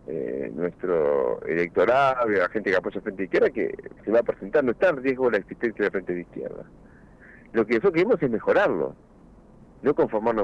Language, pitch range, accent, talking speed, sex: Spanish, 105-175 Hz, Argentinian, 200 wpm, male